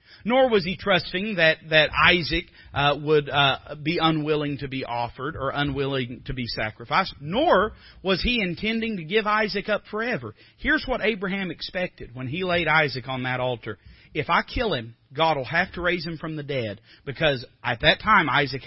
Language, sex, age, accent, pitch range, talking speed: English, male, 40-59, American, 130-215 Hz, 185 wpm